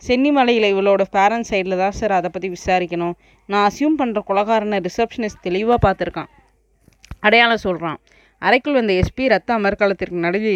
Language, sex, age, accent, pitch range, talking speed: Tamil, female, 20-39, native, 180-220 Hz, 135 wpm